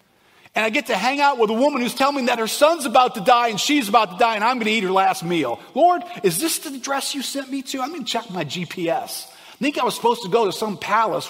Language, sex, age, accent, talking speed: English, male, 50-69, American, 295 wpm